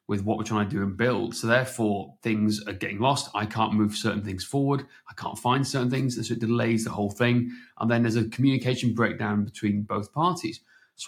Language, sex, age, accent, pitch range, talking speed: English, male, 30-49, British, 110-130 Hz, 225 wpm